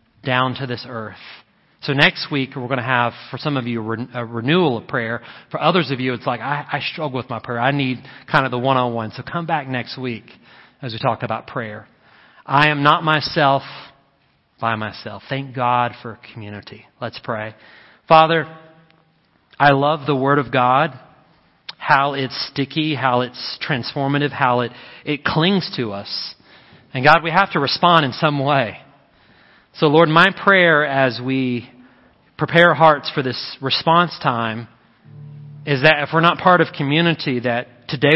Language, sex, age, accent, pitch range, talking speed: English, male, 30-49, American, 125-155 Hz, 170 wpm